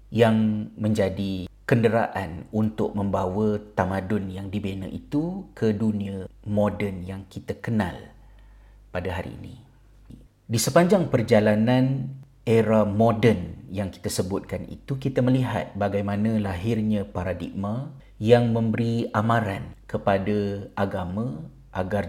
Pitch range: 100-115 Hz